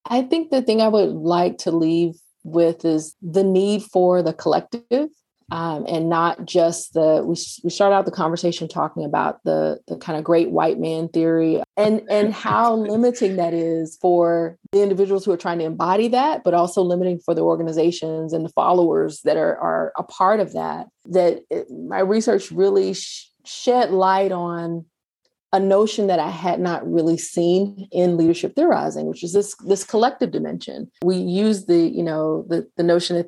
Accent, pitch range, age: American, 165-195 Hz, 30-49